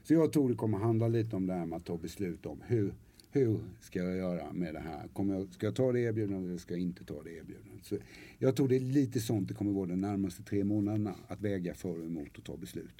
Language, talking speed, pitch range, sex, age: English, 270 wpm, 105-145 Hz, male, 50-69